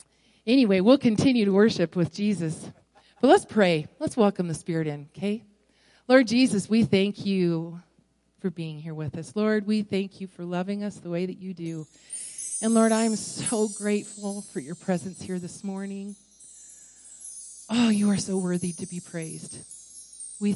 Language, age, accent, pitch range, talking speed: English, 40-59, American, 180-220 Hz, 170 wpm